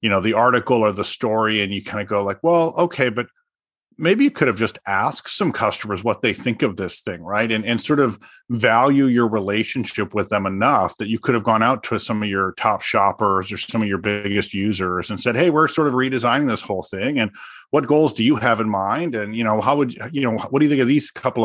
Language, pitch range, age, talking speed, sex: English, 105-125 Hz, 30-49, 255 wpm, male